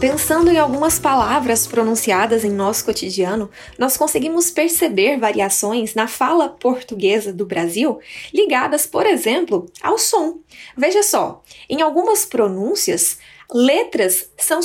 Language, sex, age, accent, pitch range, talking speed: Portuguese, female, 10-29, Brazilian, 230-330 Hz, 120 wpm